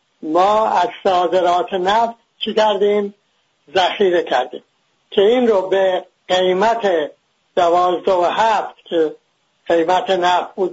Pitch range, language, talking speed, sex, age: 180-230 Hz, English, 105 wpm, male, 60-79